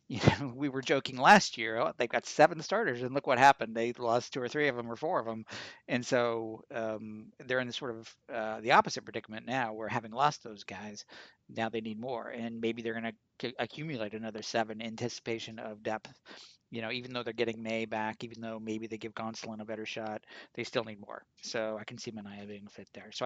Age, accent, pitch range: 50-69, American, 110-130 Hz